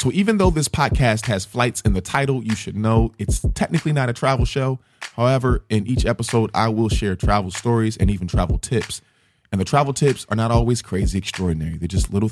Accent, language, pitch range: American, English, 95-120 Hz